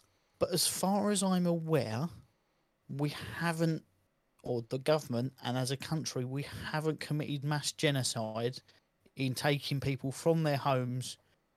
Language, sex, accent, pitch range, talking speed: English, male, British, 125-150 Hz, 135 wpm